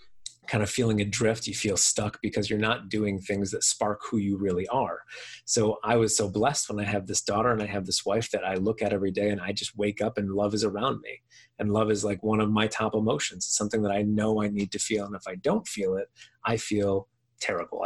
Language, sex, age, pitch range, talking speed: English, male, 30-49, 105-120 Hz, 255 wpm